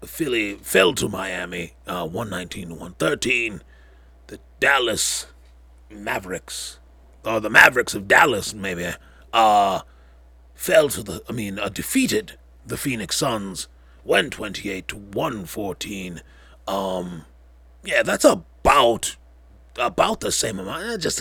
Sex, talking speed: male, 125 wpm